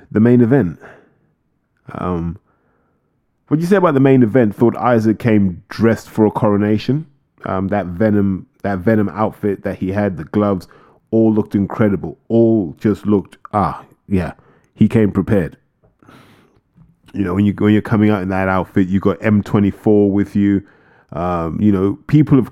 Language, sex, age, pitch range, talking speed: English, male, 20-39, 95-115 Hz, 165 wpm